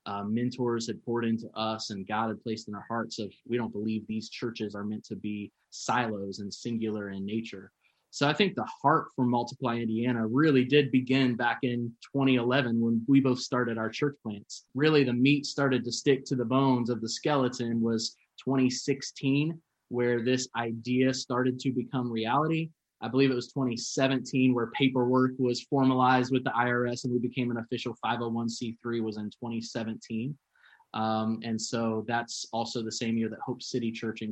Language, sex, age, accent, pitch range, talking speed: English, male, 20-39, American, 115-130 Hz, 180 wpm